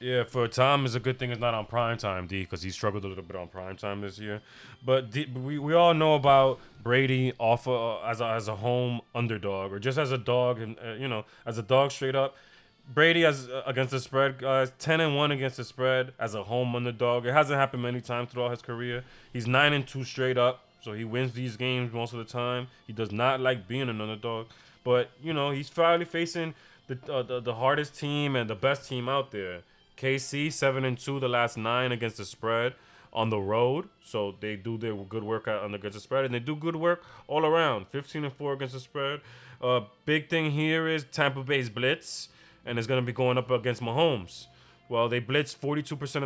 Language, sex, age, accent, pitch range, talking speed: English, male, 20-39, American, 115-140 Hz, 220 wpm